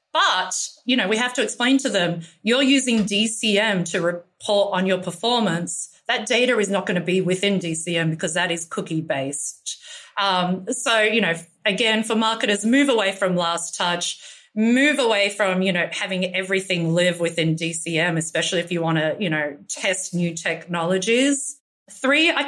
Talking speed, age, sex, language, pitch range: 170 wpm, 30-49, female, English, 175-225 Hz